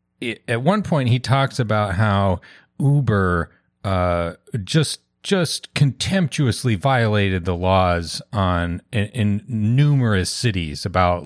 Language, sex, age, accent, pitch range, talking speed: English, male, 30-49, American, 95-115 Hz, 110 wpm